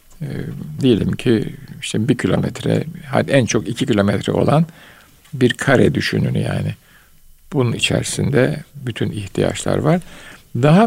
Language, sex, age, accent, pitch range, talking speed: Turkish, male, 60-79, native, 115-160 Hz, 115 wpm